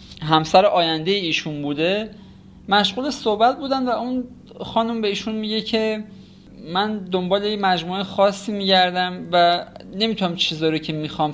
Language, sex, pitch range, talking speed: Persian, male, 160-205 Hz, 130 wpm